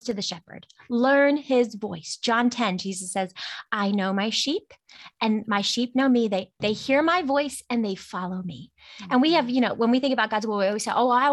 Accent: American